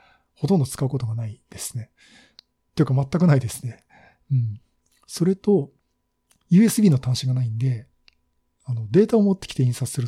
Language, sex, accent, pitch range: Japanese, male, native, 125-180 Hz